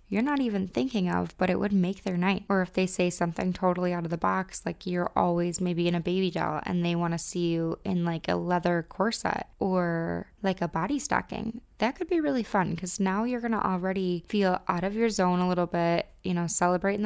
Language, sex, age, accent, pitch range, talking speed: English, female, 20-39, American, 170-190 Hz, 235 wpm